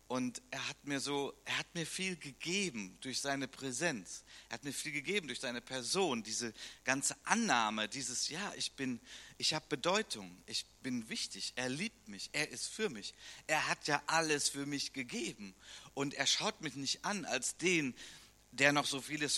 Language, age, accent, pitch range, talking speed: German, 50-69, German, 130-185 Hz, 175 wpm